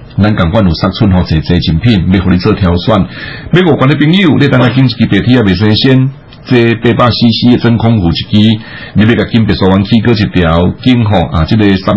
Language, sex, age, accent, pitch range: Chinese, male, 60-79, Malaysian, 90-120 Hz